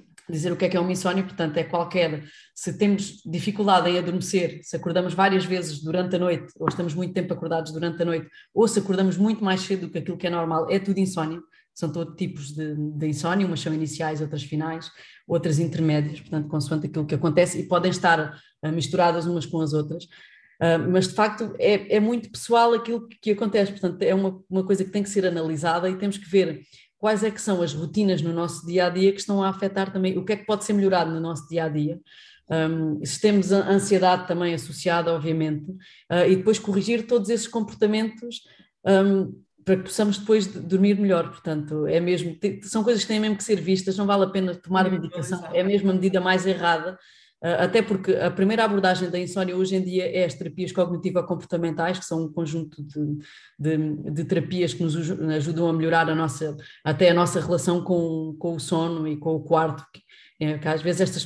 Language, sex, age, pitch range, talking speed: Portuguese, female, 20-39, 165-195 Hz, 205 wpm